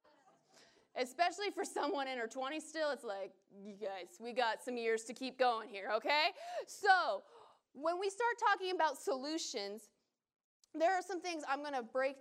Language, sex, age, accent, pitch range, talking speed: English, female, 20-39, American, 225-310 Hz, 170 wpm